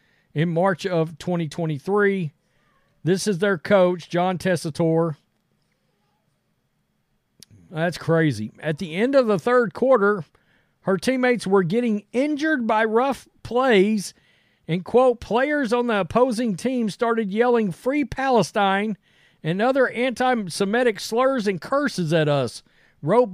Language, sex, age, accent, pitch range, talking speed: English, male, 40-59, American, 180-240 Hz, 120 wpm